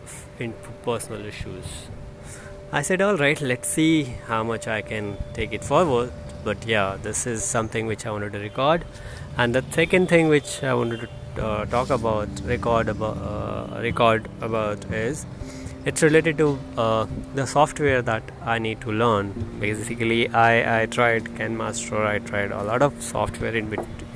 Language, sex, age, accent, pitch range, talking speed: English, male, 20-39, Indian, 110-130 Hz, 170 wpm